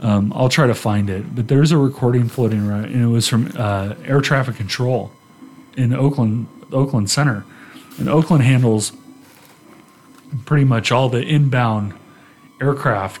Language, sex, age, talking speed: English, male, 30-49, 150 wpm